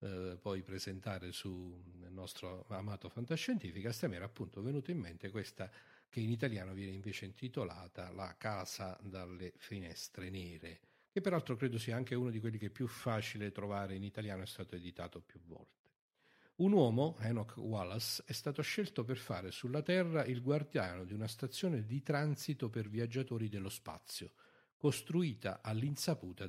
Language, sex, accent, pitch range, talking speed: Italian, male, native, 95-135 Hz, 165 wpm